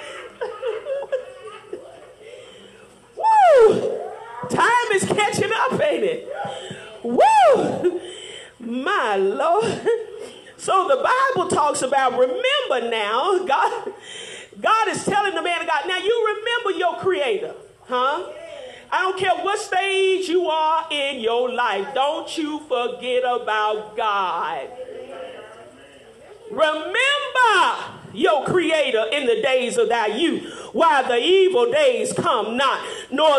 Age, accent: 40-59, American